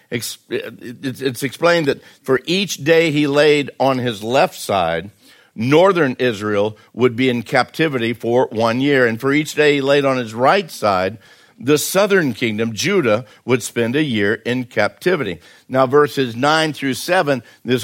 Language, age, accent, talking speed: English, 60-79, American, 160 wpm